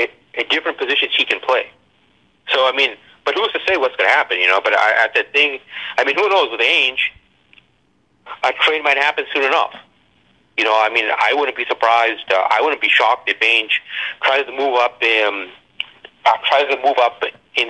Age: 40-59